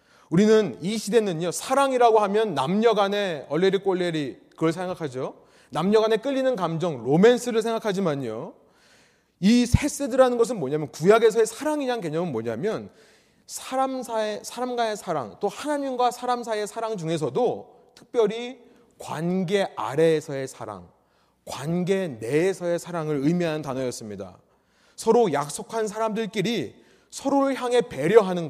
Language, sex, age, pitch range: Korean, male, 30-49, 160-230 Hz